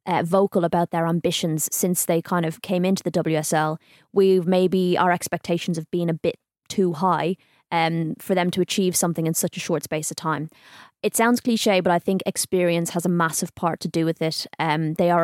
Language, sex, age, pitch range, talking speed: English, female, 20-39, 165-185 Hz, 215 wpm